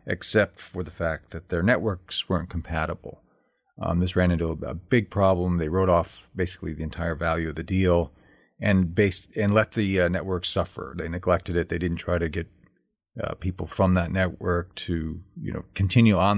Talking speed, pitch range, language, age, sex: 190 wpm, 85-100 Hz, English, 40-59, male